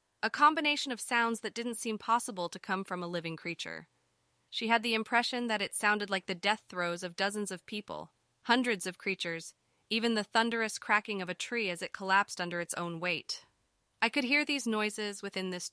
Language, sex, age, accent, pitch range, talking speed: English, female, 20-39, American, 170-215 Hz, 200 wpm